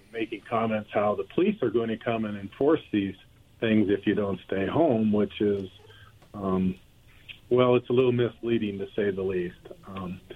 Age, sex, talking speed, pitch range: 50-69, male, 180 wpm, 100-120 Hz